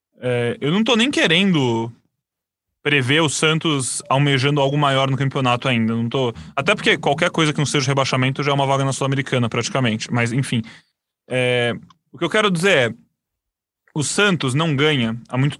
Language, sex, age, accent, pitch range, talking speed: Portuguese, male, 20-39, Brazilian, 125-180 Hz, 180 wpm